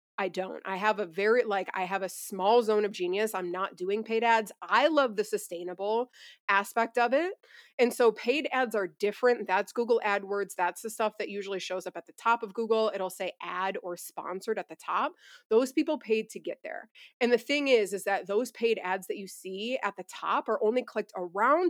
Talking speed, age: 220 wpm, 30-49